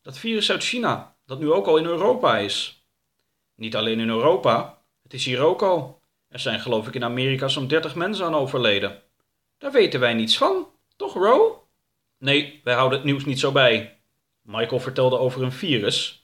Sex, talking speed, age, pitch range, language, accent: male, 190 wpm, 30-49, 115-175 Hz, Dutch, Dutch